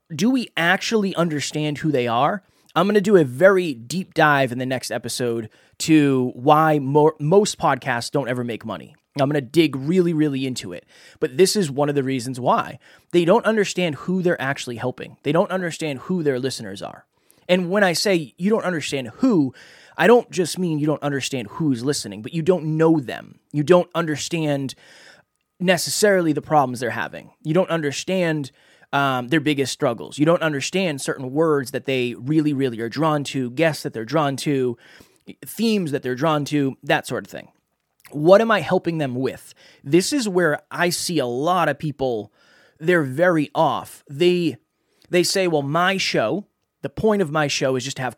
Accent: American